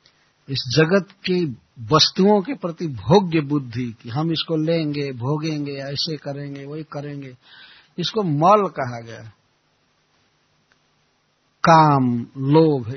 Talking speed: 105 wpm